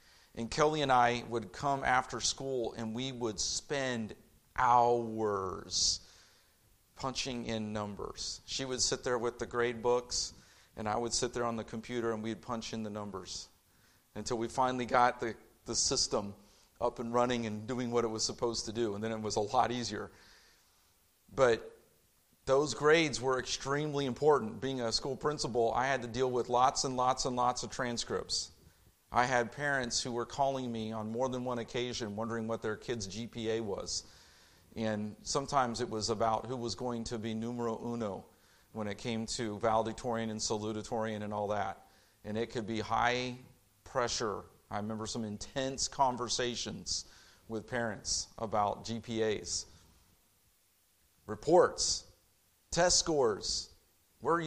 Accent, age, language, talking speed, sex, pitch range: American, 40-59, English, 160 wpm, male, 105-125 Hz